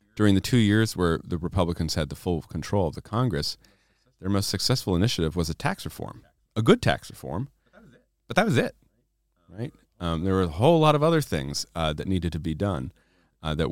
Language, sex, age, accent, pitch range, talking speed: English, male, 40-59, American, 80-105 Hz, 210 wpm